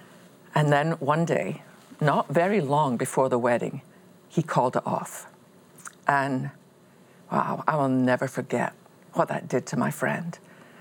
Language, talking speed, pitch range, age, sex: English, 145 wpm, 135-175 Hz, 50-69, female